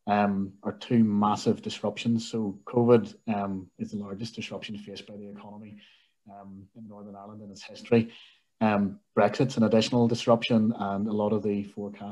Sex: male